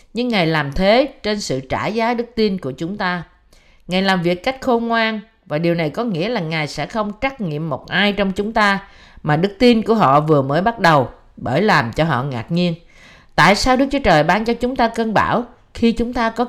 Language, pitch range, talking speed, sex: Vietnamese, 145-220 Hz, 235 wpm, female